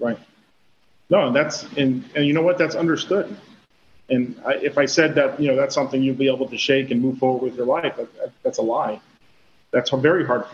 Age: 40-59